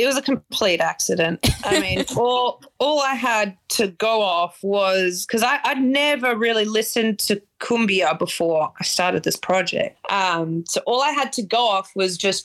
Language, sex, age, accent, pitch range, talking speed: English, female, 20-39, Australian, 175-210 Hz, 185 wpm